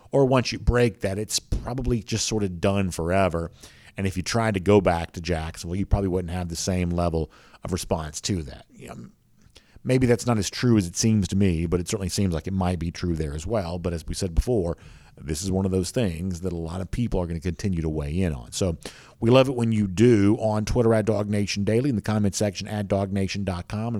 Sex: male